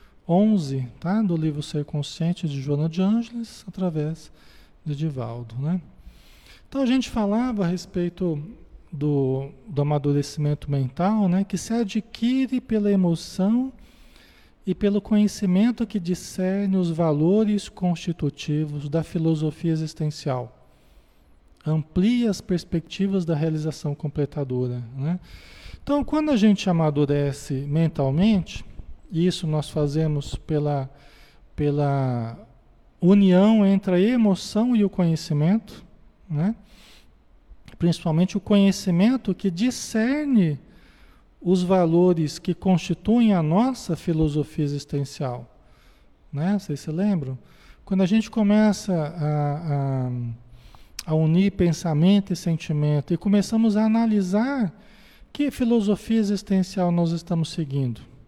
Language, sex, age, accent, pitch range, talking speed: Portuguese, male, 40-59, Brazilian, 150-205 Hz, 110 wpm